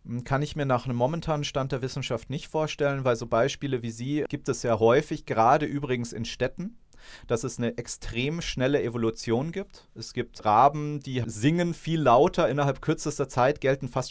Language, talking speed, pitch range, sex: German, 185 wpm, 125-150 Hz, male